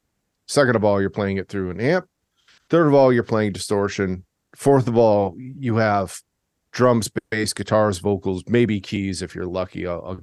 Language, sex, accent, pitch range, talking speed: English, male, American, 100-130 Hz, 180 wpm